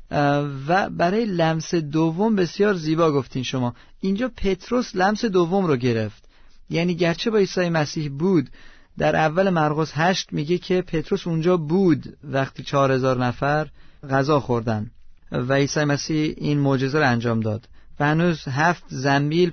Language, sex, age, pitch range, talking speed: Persian, male, 40-59, 140-175 Hz, 145 wpm